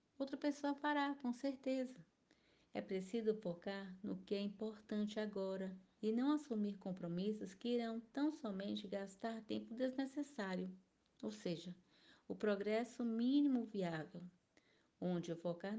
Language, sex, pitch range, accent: Portuguese, female, 190-235 Hz, Brazilian